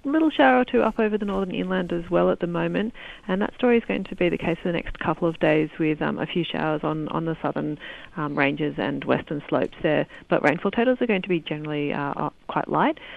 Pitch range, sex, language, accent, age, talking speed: 150-185 Hz, female, English, Australian, 30-49, 250 wpm